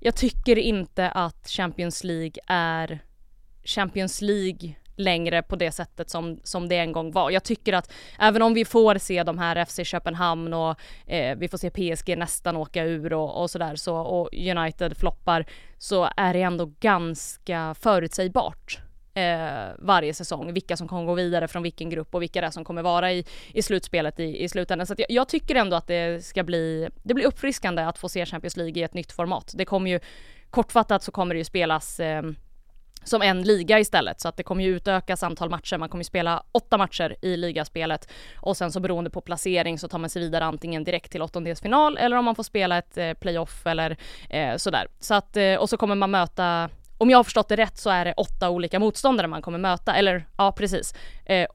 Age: 20-39